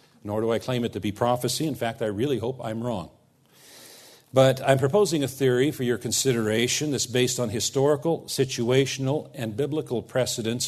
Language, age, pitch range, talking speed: English, 50-69, 120-140 Hz, 175 wpm